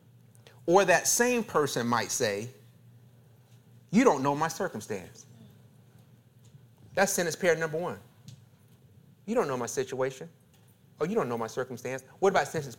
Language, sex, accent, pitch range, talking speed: English, male, American, 120-145 Hz, 140 wpm